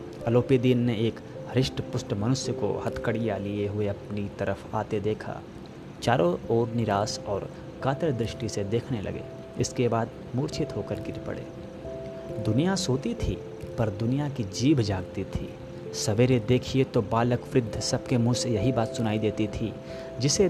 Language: Hindi